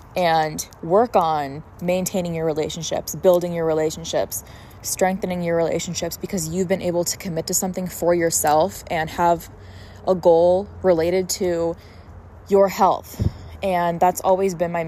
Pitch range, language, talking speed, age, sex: 165-185 Hz, English, 140 wpm, 20-39, female